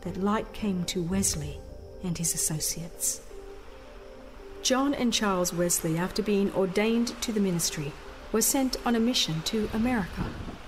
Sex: female